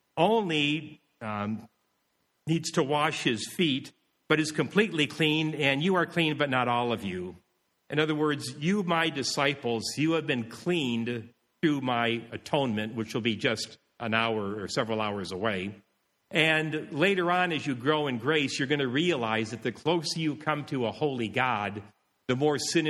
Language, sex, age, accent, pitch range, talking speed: English, male, 50-69, American, 110-150 Hz, 175 wpm